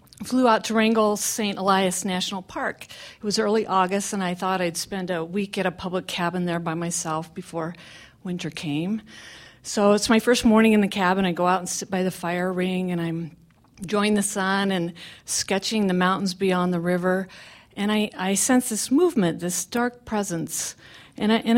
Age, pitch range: 50-69, 180-240 Hz